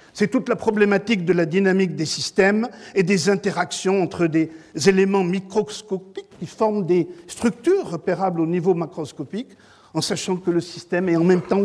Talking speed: 170 wpm